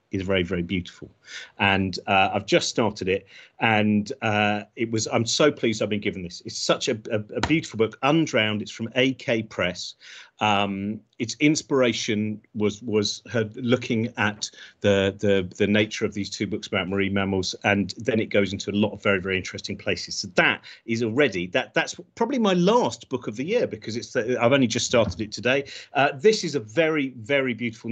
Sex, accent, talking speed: male, British, 200 wpm